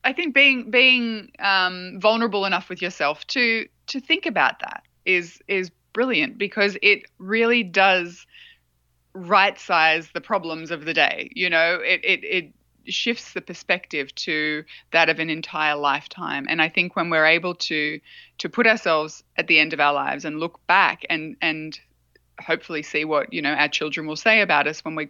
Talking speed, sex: 180 wpm, female